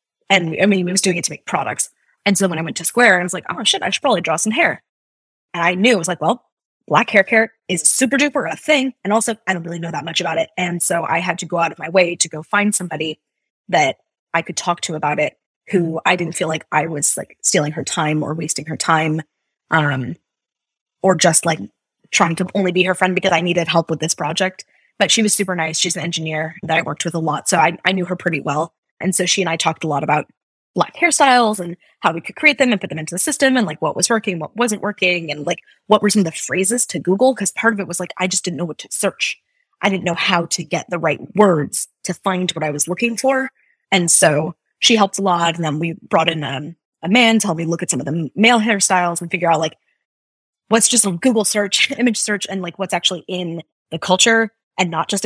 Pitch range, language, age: 160-200 Hz, English, 20-39